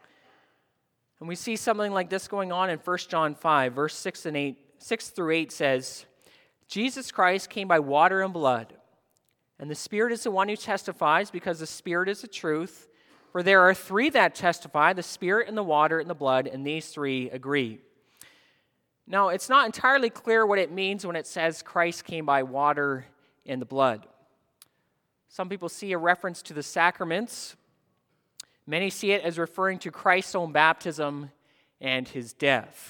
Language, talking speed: English, 175 wpm